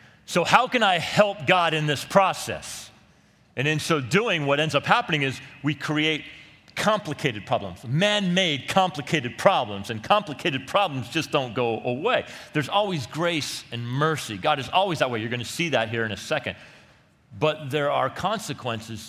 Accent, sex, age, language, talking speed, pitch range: American, male, 40-59, English, 175 wpm, 100-145 Hz